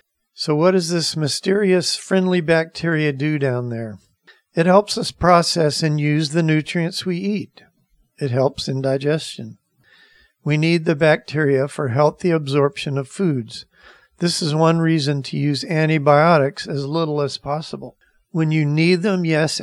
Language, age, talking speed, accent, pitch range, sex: English, 50-69, 150 wpm, American, 135-165 Hz, male